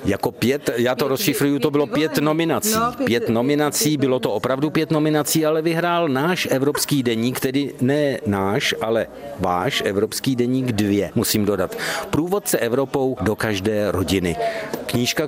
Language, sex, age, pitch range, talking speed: Czech, male, 50-69, 120-155 Hz, 145 wpm